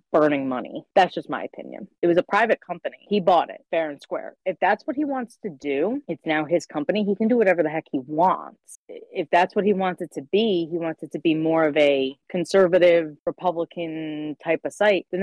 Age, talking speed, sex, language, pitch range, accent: 30-49, 230 wpm, female, English, 155-195 Hz, American